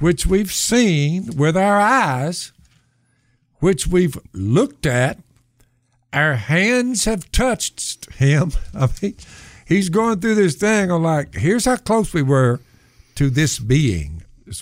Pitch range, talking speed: 120-175 Hz, 135 wpm